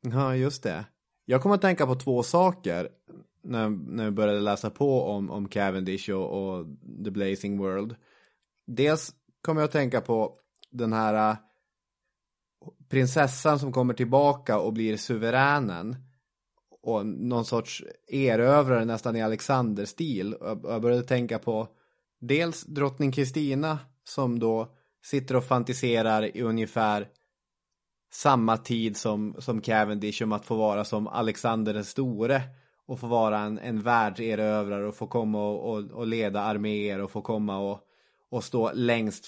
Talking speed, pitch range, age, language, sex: 140 wpm, 105-130 Hz, 20-39, English, male